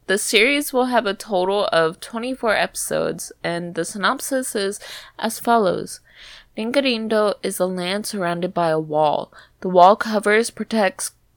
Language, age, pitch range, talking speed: English, 20-39, 165-220 Hz, 140 wpm